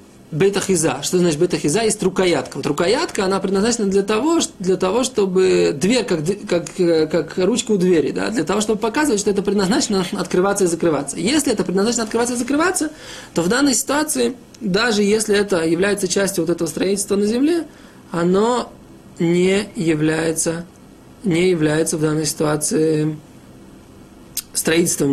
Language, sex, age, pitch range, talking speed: Russian, male, 20-39, 160-210 Hz, 150 wpm